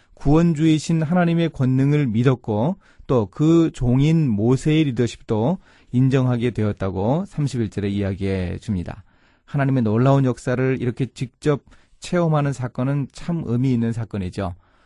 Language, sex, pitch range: Korean, male, 110-150 Hz